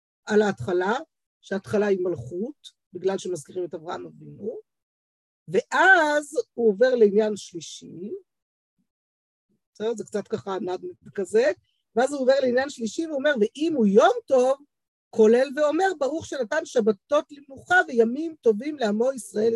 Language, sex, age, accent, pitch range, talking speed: Hebrew, female, 50-69, native, 190-270 Hz, 125 wpm